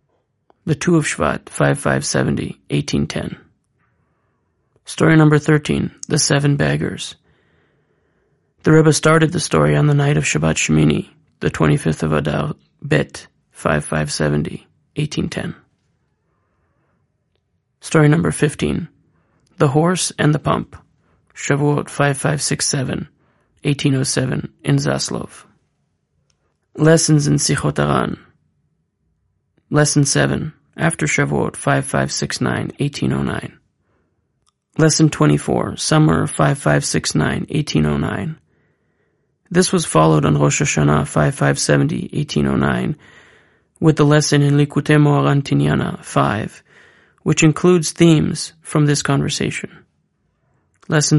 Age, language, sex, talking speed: 30-49, English, male, 90 wpm